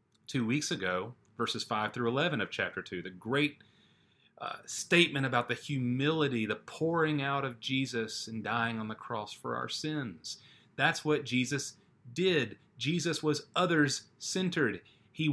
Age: 30-49